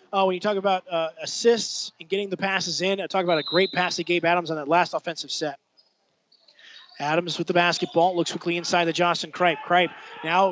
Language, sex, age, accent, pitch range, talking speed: English, male, 20-39, American, 165-195 Hz, 210 wpm